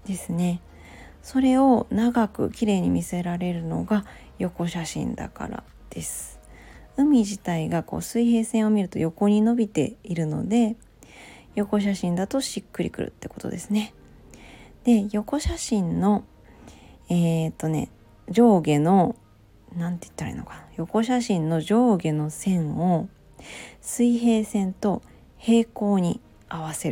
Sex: female